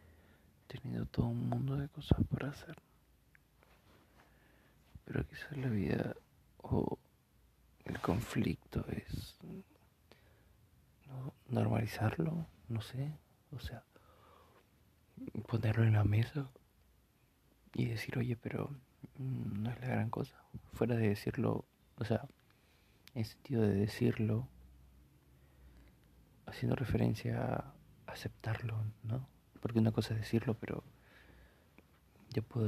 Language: Spanish